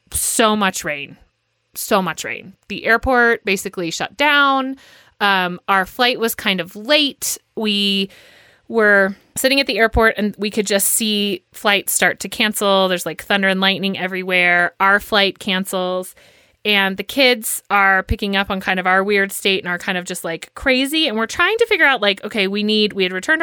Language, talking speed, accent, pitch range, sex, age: English, 190 wpm, American, 195-255 Hz, female, 30-49